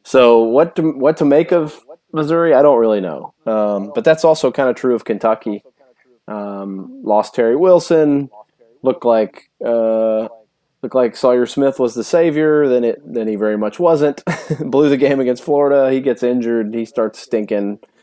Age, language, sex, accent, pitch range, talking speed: 30-49, English, male, American, 110-145 Hz, 175 wpm